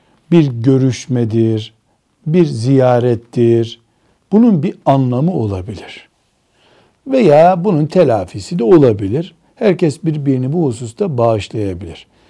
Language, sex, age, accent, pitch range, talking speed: Turkish, male, 60-79, native, 120-155 Hz, 90 wpm